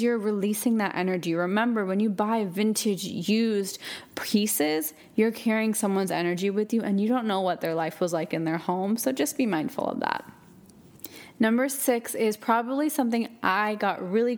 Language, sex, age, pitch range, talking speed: English, female, 20-39, 195-240 Hz, 180 wpm